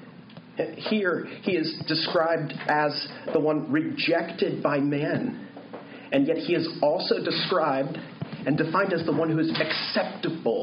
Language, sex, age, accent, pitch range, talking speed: English, male, 40-59, American, 145-235 Hz, 135 wpm